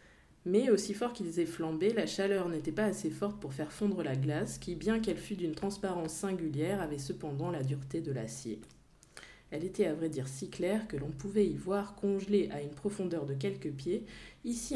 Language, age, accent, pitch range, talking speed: French, 20-39, French, 155-205 Hz, 205 wpm